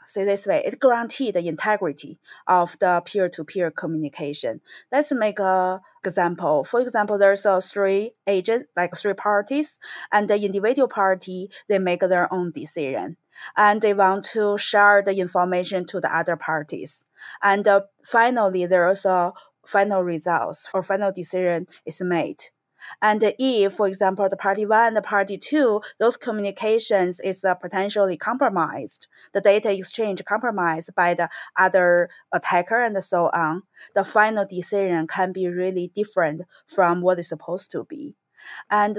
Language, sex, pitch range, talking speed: English, female, 180-210 Hz, 155 wpm